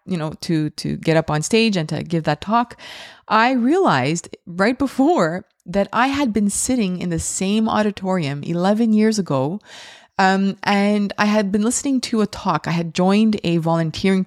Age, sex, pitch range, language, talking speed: 20-39, female, 170-220 Hz, English, 180 wpm